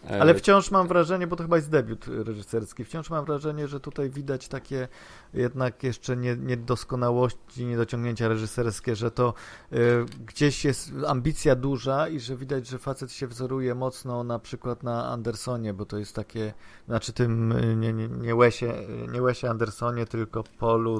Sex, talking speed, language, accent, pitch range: male, 155 wpm, Polish, native, 115-135 Hz